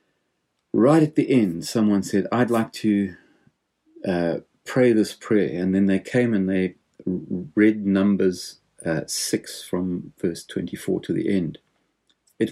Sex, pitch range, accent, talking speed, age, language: male, 90-110 Hz, British, 145 wpm, 40-59, English